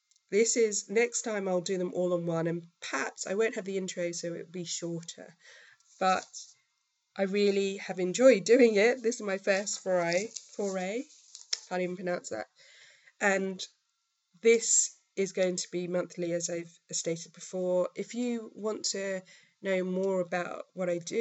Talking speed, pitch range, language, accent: 170 wpm, 170-195 Hz, English, British